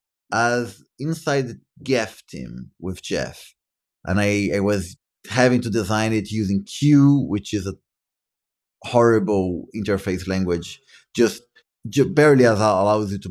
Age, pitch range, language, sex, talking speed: 30-49, 95-115 Hz, English, male, 135 wpm